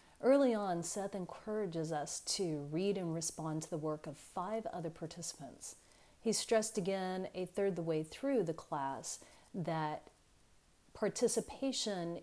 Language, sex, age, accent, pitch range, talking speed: English, female, 40-59, American, 160-210 Hz, 135 wpm